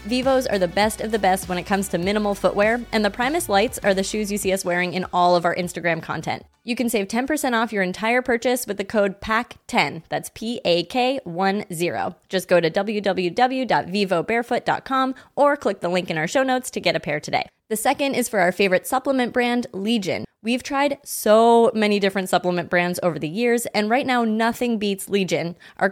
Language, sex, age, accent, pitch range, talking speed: English, female, 20-39, American, 180-235 Hz, 205 wpm